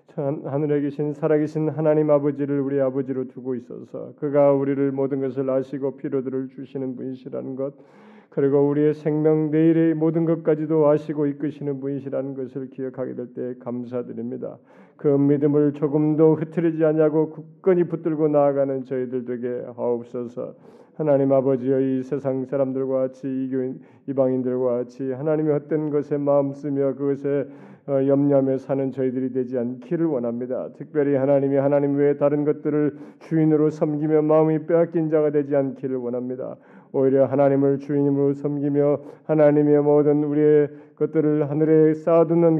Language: Korean